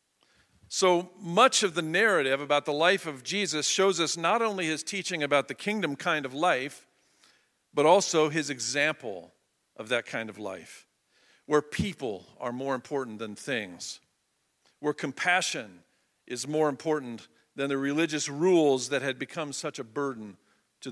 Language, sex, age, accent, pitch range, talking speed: English, male, 50-69, American, 135-180 Hz, 155 wpm